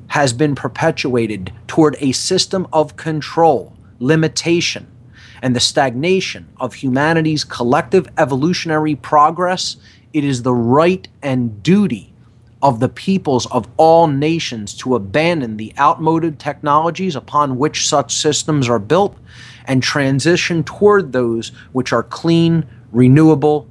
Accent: American